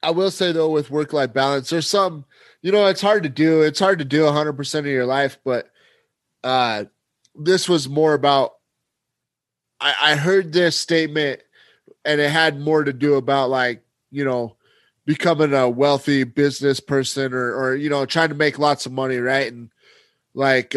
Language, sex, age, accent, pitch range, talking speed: English, male, 30-49, American, 135-160 Hz, 180 wpm